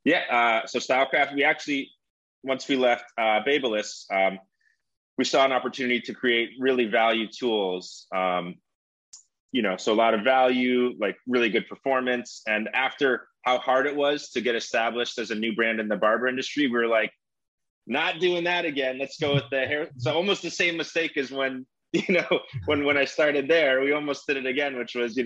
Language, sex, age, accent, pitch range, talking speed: English, male, 20-39, American, 110-135 Hz, 200 wpm